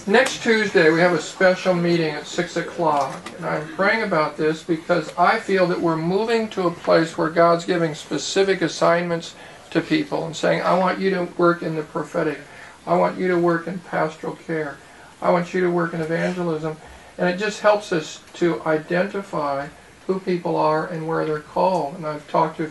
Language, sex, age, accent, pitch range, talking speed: English, male, 50-69, American, 160-180 Hz, 200 wpm